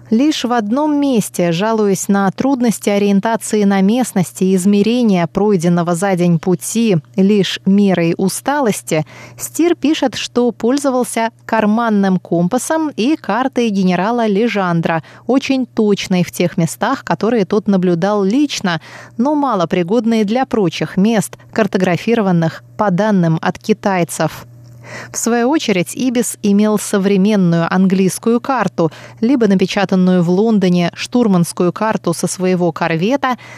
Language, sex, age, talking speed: Russian, female, 20-39, 115 wpm